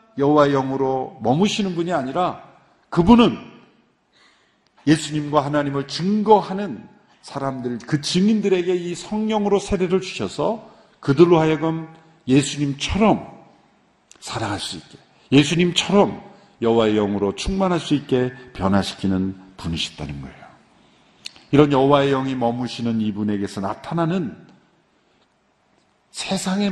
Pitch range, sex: 115-175 Hz, male